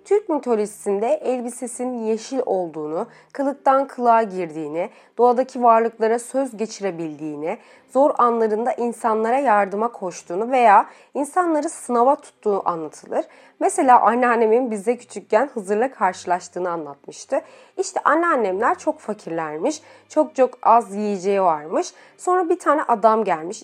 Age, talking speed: 30-49, 110 wpm